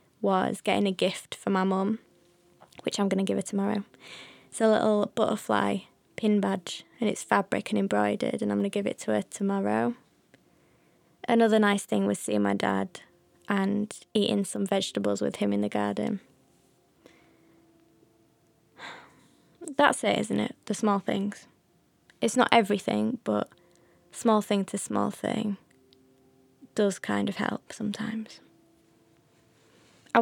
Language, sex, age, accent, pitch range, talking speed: English, female, 20-39, British, 130-215 Hz, 145 wpm